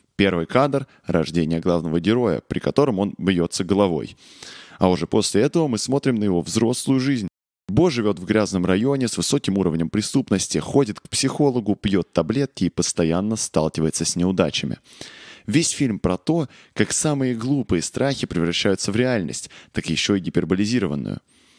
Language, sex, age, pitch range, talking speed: Russian, male, 20-39, 90-125 Hz, 150 wpm